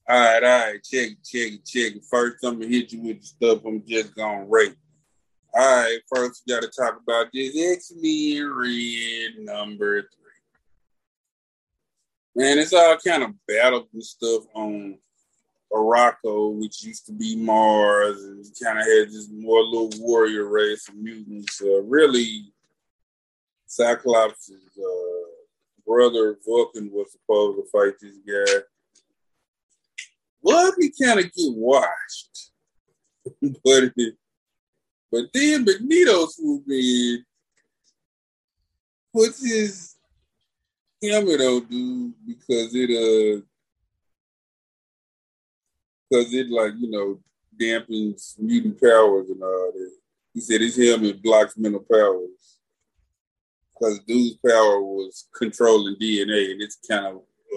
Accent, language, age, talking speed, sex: American, English, 20-39, 125 wpm, male